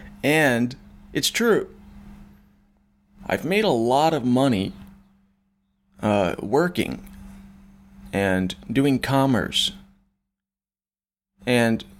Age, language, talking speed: 30-49, English, 75 wpm